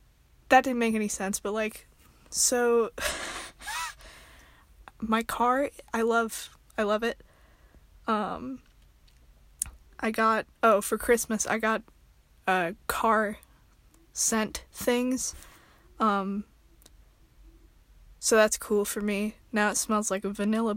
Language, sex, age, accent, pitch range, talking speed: English, female, 20-39, American, 195-225 Hz, 115 wpm